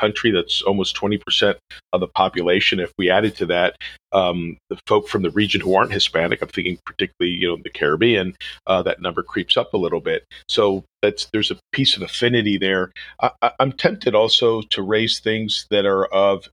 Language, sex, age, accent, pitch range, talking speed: English, male, 40-59, American, 95-110 Hz, 190 wpm